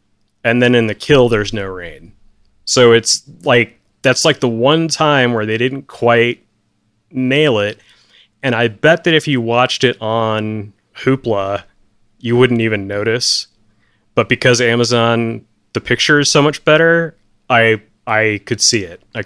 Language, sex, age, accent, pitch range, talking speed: English, male, 30-49, American, 105-130 Hz, 160 wpm